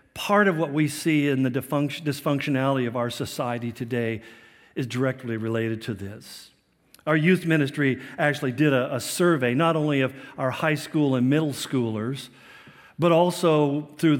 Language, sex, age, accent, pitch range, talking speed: English, male, 50-69, American, 130-175 Hz, 155 wpm